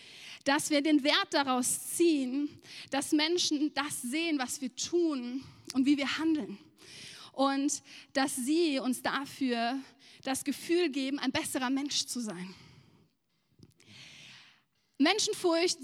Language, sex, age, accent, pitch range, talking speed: German, female, 30-49, German, 270-330 Hz, 115 wpm